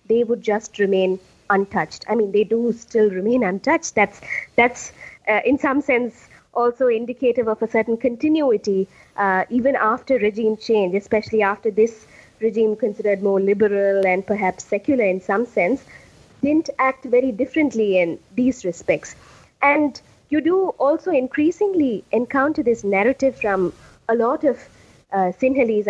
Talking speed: 145 wpm